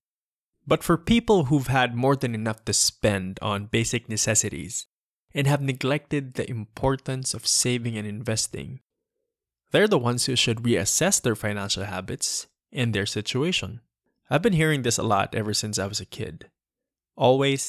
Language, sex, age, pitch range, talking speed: English, male, 20-39, 105-135 Hz, 160 wpm